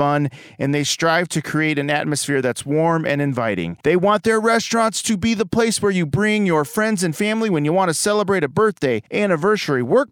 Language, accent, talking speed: English, American, 210 wpm